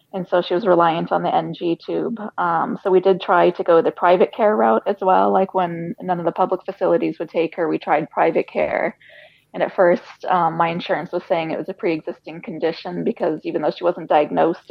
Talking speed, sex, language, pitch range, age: 225 wpm, female, English, 170-190 Hz, 20-39